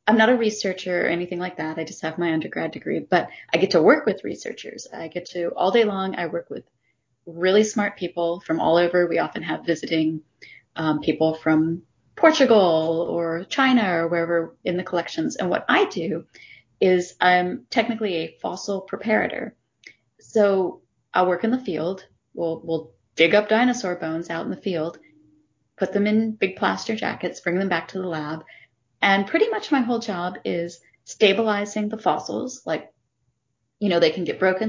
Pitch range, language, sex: 165-215 Hz, English, female